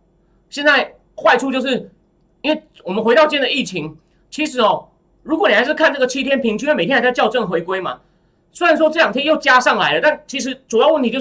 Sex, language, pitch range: male, Chinese, 185-265 Hz